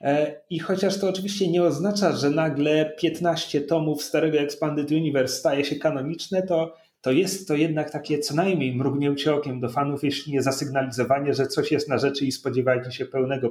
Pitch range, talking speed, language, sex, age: 140-170 Hz, 180 wpm, Polish, male, 30-49